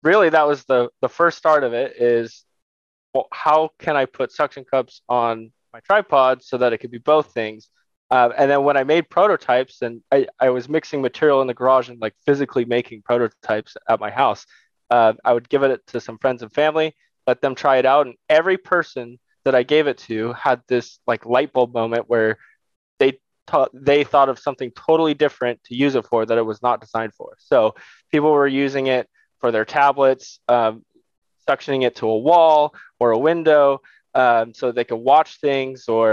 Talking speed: 205 wpm